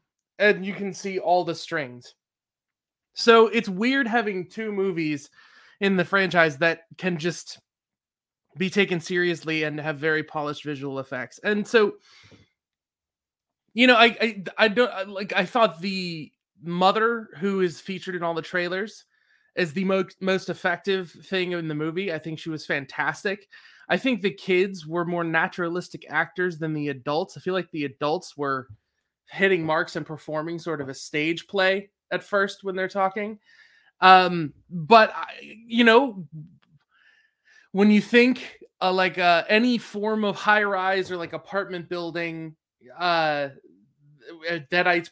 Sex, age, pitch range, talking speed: male, 20-39, 160-200 Hz, 150 wpm